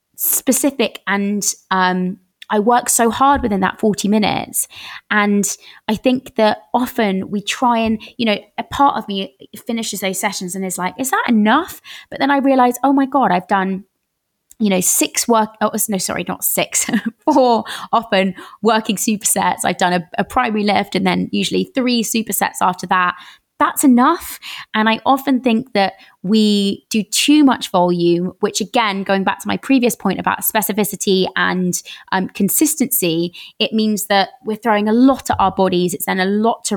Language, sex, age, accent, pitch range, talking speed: English, female, 20-39, British, 195-245 Hz, 180 wpm